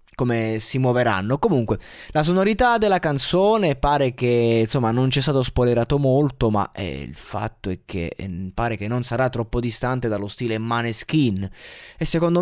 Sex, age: male, 20-39